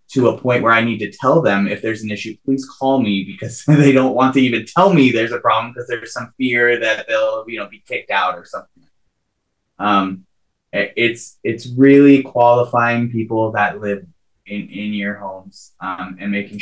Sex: male